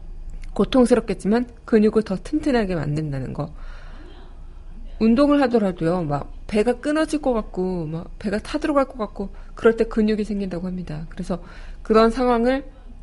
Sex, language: female, Korean